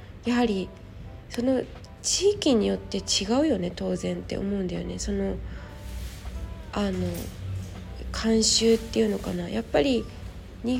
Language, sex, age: Japanese, female, 20-39